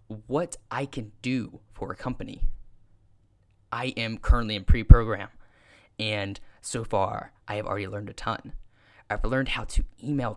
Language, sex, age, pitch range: English, male, 10-29, 100-125 Hz